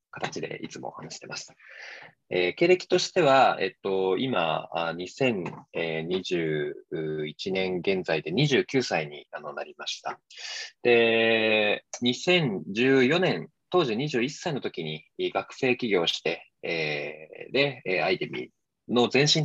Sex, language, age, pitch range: male, Japanese, 20-39, 95-160 Hz